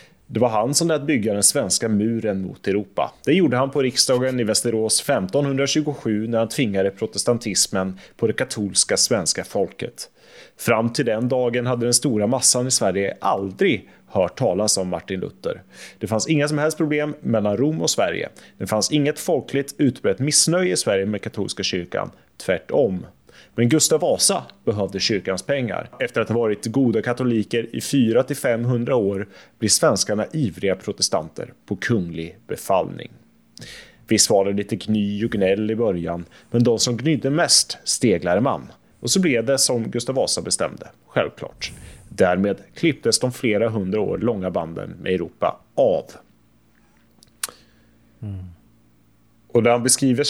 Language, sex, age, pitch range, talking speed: English, male, 30-49, 100-130 Hz, 150 wpm